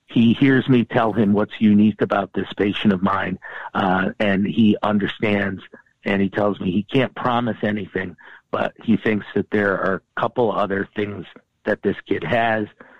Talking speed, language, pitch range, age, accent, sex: 175 wpm, English, 100-120 Hz, 50-69, American, male